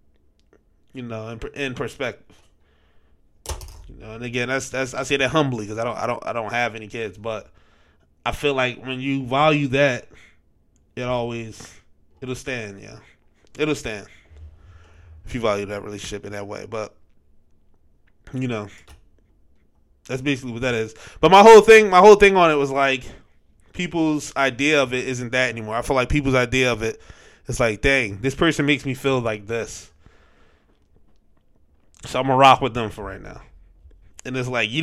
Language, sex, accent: English, male, American